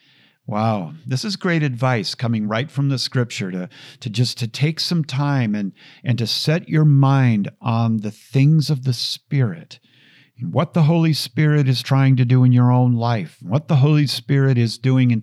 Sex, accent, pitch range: male, American, 115-150 Hz